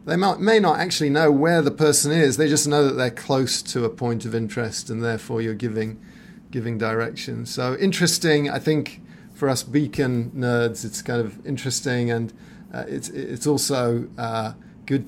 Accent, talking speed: British, 180 wpm